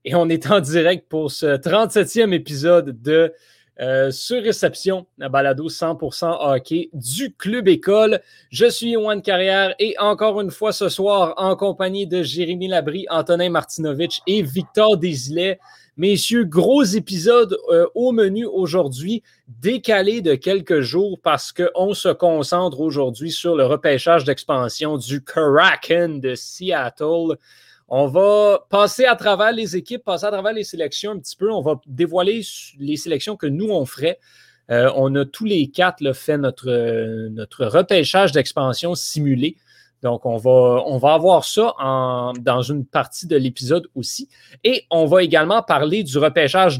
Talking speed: 155 wpm